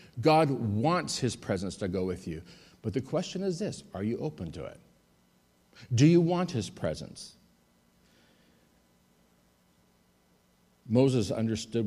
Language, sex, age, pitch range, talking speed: English, male, 50-69, 105-160 Hz, 125 wpm